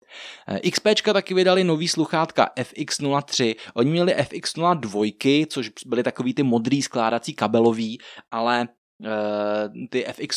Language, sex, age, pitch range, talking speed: Czech, male, 20-39, 115-140 Hz, 115 wpm